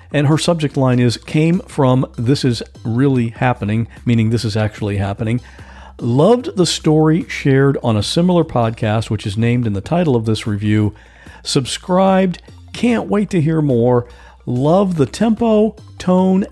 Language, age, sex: English, 50-69, male